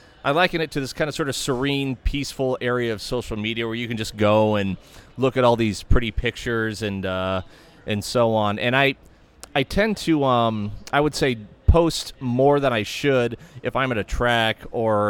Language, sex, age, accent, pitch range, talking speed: English, male, 30-49, American, 110-135 Hz, 205 wpm